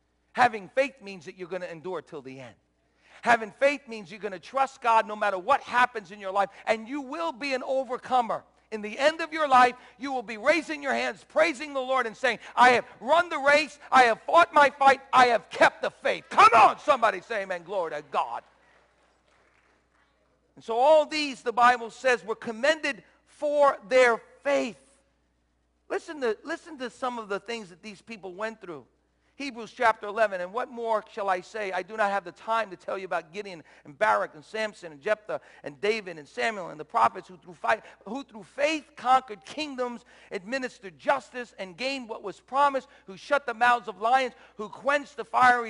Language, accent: English, American